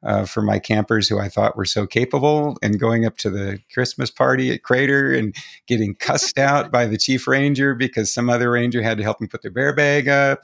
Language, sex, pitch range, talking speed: English, male, 100-120 Hz, 230 wpm